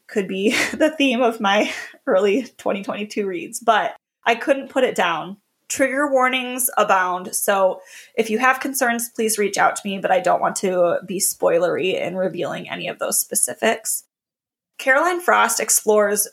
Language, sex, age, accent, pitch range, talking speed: English, female, 20-39, American, 195-255 Hz, 160 wpm